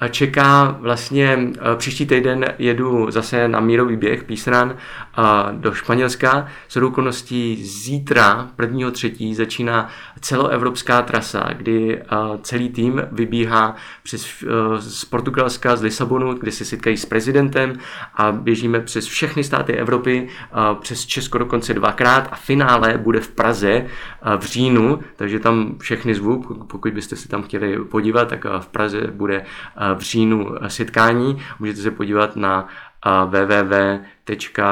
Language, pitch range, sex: Czech, 110-125 Hz, male